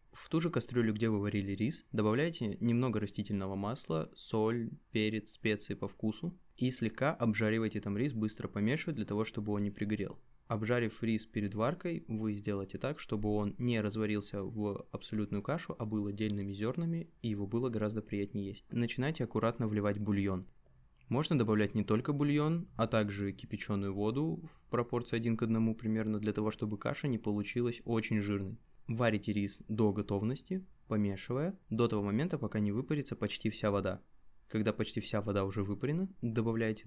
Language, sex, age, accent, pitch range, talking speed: Russian, male, 20-39, native, 105-120 Hz, 165 wpm